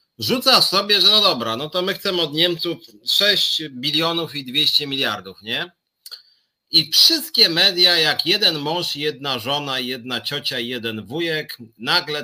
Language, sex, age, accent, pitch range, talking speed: Polish, male, 30-49, native, 130-175 Hz, 145 wpm